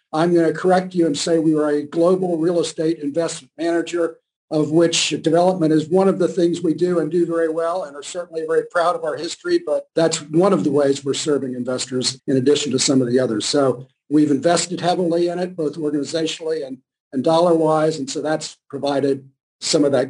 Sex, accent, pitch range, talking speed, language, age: male, American, 145-170 Hz, 220 wpm, English, 50-69